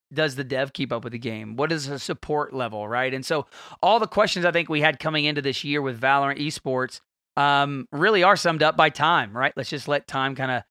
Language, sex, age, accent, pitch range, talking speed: English, male, 30-49, American, 145-180 Hz, 235 wpm